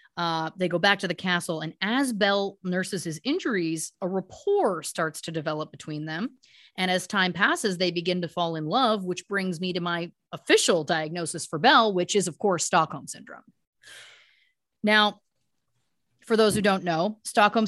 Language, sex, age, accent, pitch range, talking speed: English, female, 30-49, American, 165-210 Hz, 175 wpm